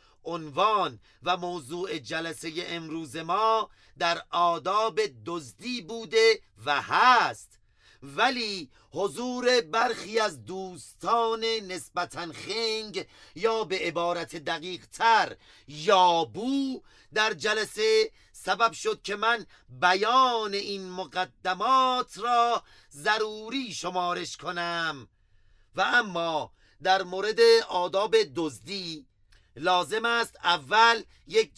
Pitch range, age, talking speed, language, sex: 160-225 Hz, 40-59, 95 wpm, Persian, male